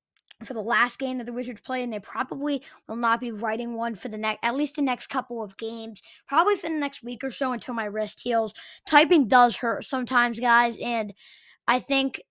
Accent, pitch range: American, 230-275 Hz